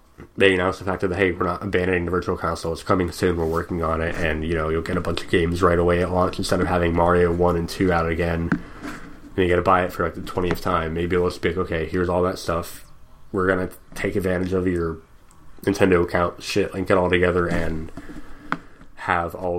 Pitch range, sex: 85-95 Hz, male